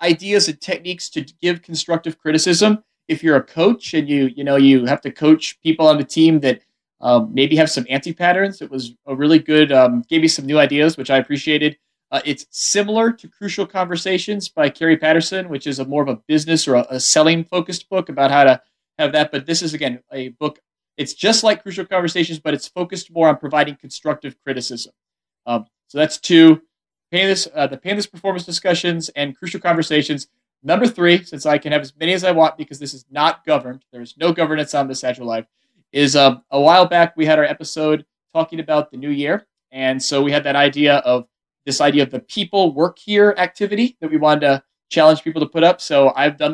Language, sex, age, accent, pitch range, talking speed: English, male, 30-49, American, 140-175 Hz, 215 wpm